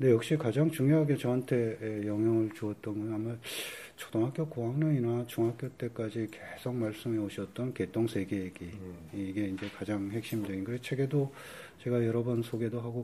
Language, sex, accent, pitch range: Korean, male, native, 100-120 Hz